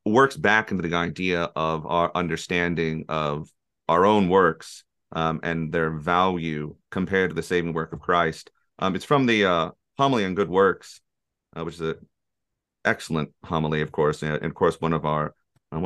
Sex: male